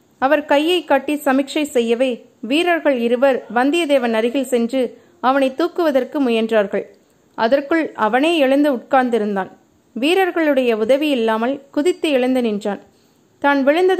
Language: Tamil